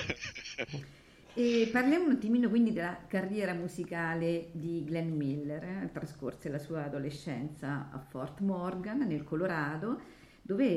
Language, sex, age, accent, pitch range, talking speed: Italian, female, 50-69, native, 165-235 Hz, 125 wpm